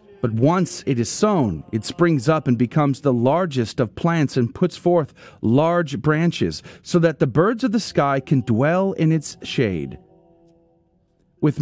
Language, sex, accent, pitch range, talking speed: English, male, American, 130-185 Hz, 165 wpm